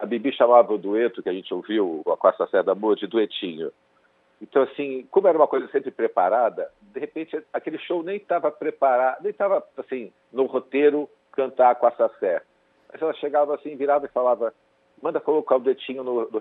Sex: male